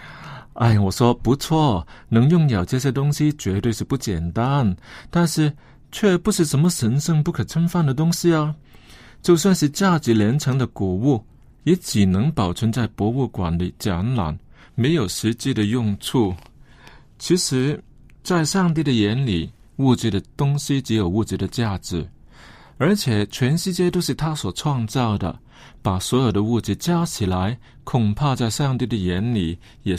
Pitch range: 105-145 Hz